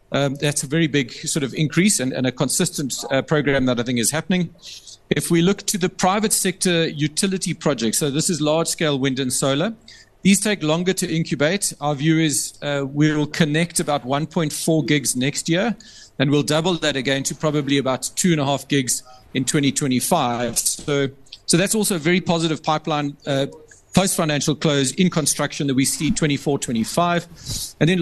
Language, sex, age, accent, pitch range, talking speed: English, male, 40-59, South African, 135-165 Hz, 180 wpm